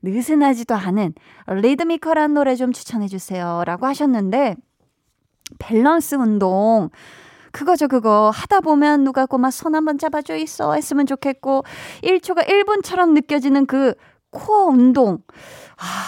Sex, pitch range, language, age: female, 195-315 Hz, Korean, 20-39